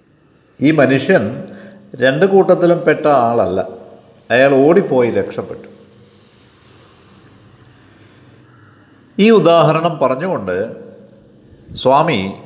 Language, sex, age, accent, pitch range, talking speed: Malayalam, male, 60-79, native, 105-145 Hz, 65 wpm